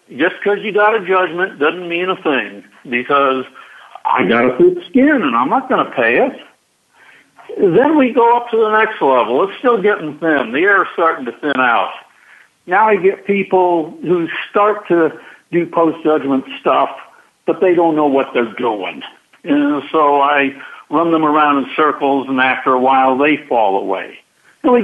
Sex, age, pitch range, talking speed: male, 60-79, 145-225 Hz, 185 wpm